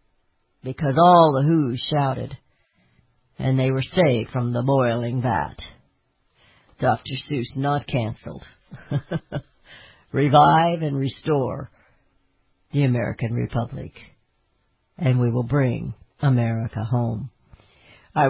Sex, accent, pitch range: female, American, 125-175 Hz